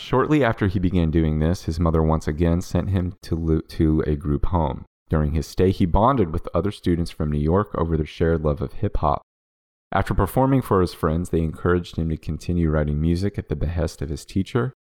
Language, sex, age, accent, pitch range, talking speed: English, male, 30-49, American, 75-95 Hz, 210 wpm